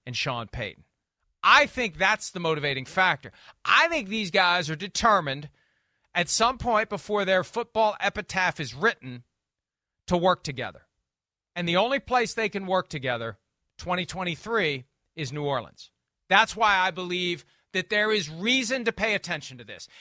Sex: male